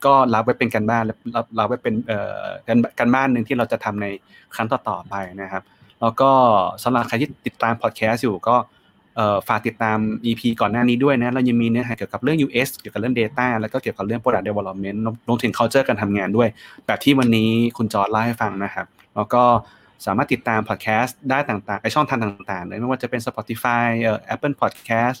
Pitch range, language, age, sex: 105-125 Hz, Thai, 20-39, male